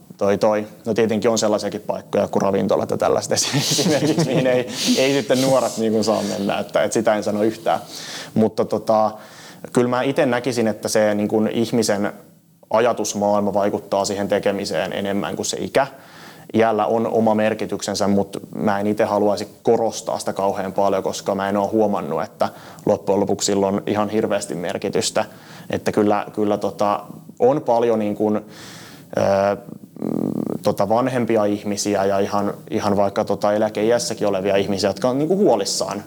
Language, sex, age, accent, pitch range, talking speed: Finnish, male, 20-39, native, 105-115 Hz, 155 wpm